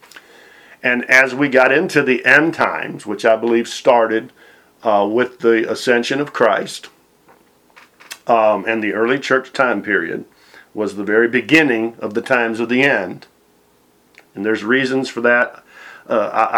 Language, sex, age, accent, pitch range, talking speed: English, male, 50-69, American, 115-140 Hz, 150 wpm